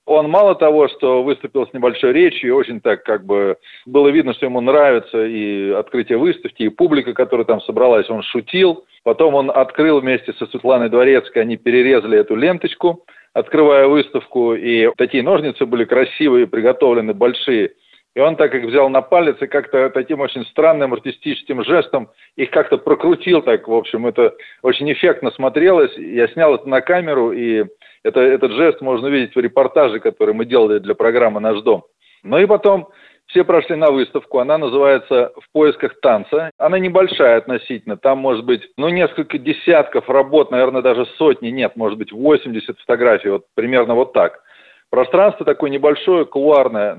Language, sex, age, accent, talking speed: Russian, male, 40-59, native, 165 wpm